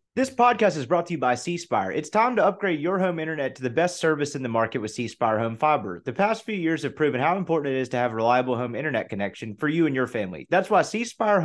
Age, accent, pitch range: 30-49, American, 125-175 Hz